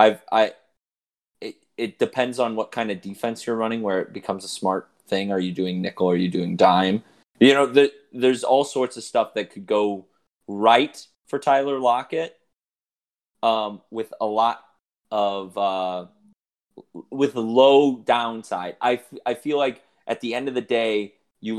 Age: 30-49